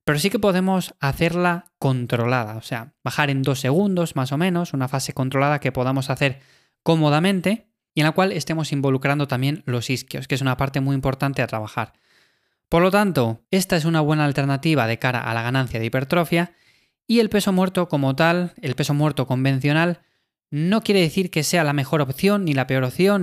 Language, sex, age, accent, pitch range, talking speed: Spanish, male, 20-39, Spanish, 130-170 Hz, 195 wpm